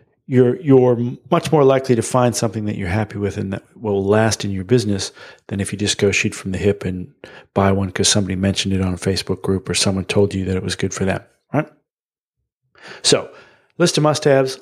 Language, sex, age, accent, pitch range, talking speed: English, male, 40-59, American, 110-135 Hz, 220 wpm